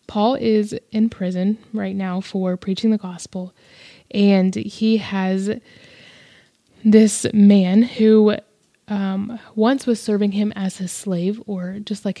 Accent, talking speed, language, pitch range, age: American, 135 wpm, English, 185-215 Hz, 20-39